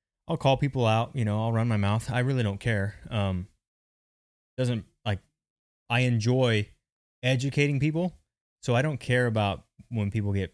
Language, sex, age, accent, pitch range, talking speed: English, male, 20-39, American, 100-125 Hz, 165 wpm